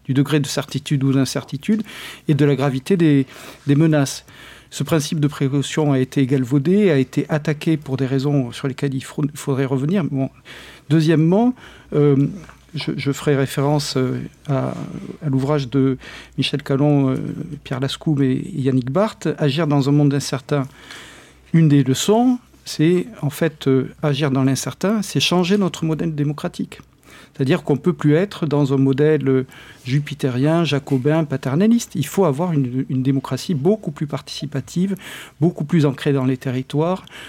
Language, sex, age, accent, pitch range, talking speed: French, male, 50-69, French, 135-165 Hz, 155 wpm